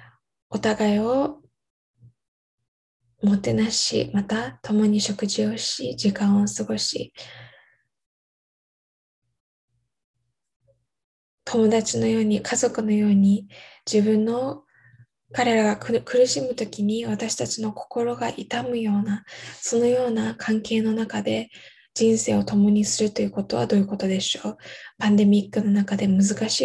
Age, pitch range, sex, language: 10-29, 200-225 Hz, female, Japanese